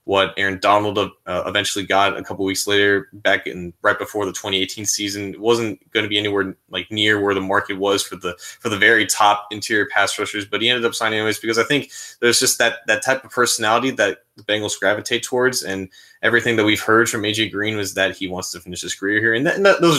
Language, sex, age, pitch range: English, male, 20-39, 95-115 Hz